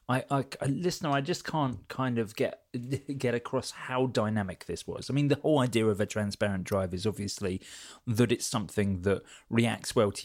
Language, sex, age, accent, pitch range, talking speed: English, male, 30-49, British, 100-135 Hz, 195 wpm